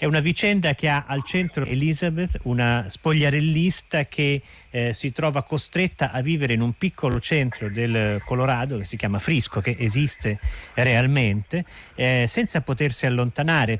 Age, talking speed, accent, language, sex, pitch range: 40-59, 150 wpm, native, Italian, male, 115-155 Hz